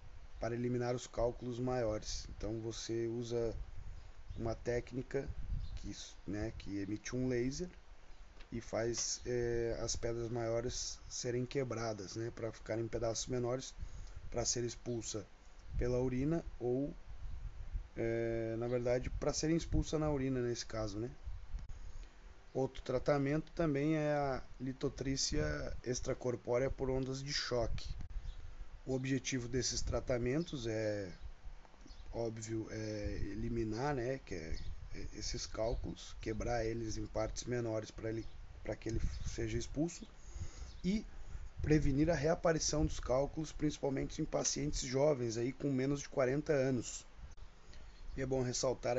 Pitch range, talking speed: 100-130 Hz, 125 wpm